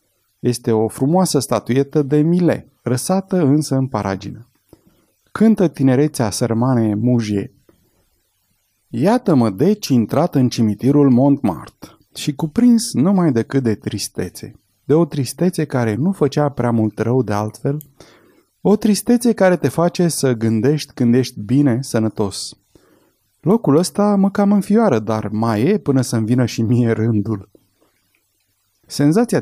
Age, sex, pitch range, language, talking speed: 30-49, male, 115-155 Hz, Romanian, 125 wpm